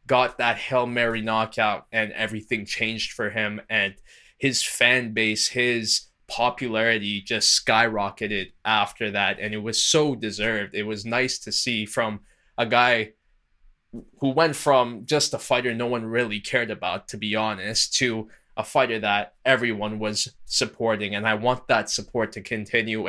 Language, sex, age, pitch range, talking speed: English, male, 20-39, 110-130 Hz, 160 wpm